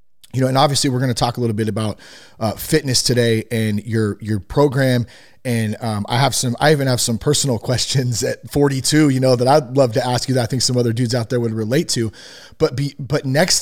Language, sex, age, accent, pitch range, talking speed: English, male, 30-49, American, 120-150 Hz, 240 wpm